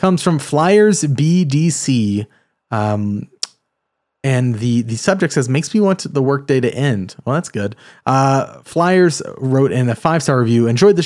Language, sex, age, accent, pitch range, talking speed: English, male, 30-49, American, 120-150 Hz, 170 wpm